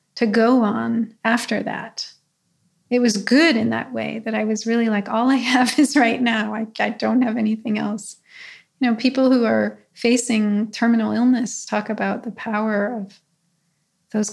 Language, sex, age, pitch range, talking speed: English, female, 30-49, 210-235 Hz, 175 wpm